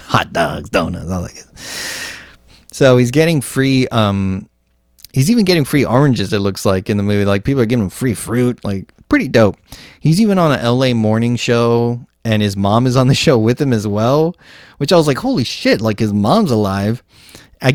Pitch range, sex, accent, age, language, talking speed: 100-125 Hz, male, American, 30-49, English, 205 wpm